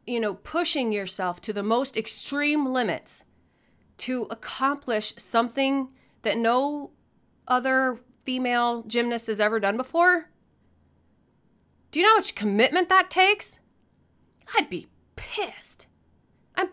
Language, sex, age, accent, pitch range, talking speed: English, female, 30-49, American, 180-240 Hz, 120 wpm